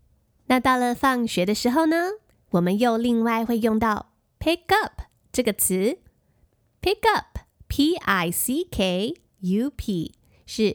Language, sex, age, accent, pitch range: Chinese, female, 20-39, American, 200-290 Hz